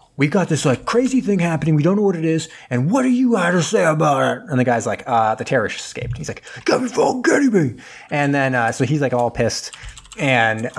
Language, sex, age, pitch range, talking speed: English, male, 30-49, 115-150 Hz, 245 wpm